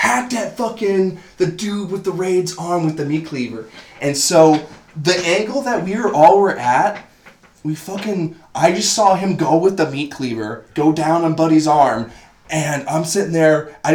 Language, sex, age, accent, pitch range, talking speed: English, male, 20-39, American, 140-190 Hz, 190 wpm